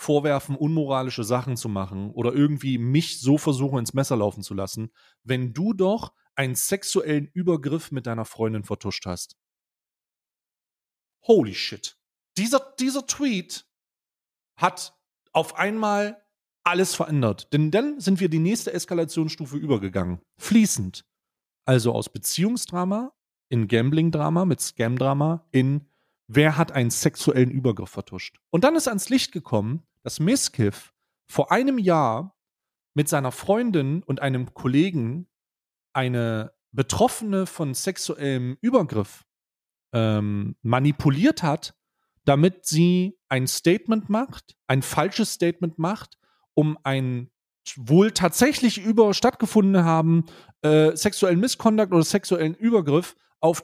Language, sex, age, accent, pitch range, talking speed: German, male, 30-49, German, 130-190 Hz, 120 wpm